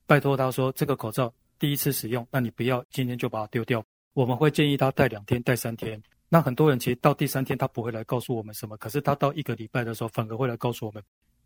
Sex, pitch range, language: male, 115-140 Hz, Chinese